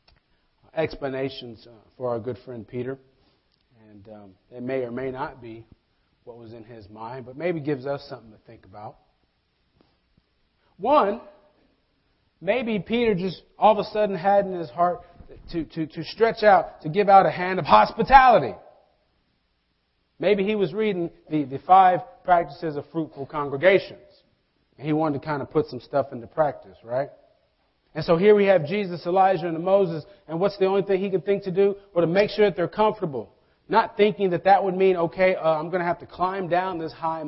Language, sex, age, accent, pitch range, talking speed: English, male, 40-59, American, 135-190 Hz, 190 wpm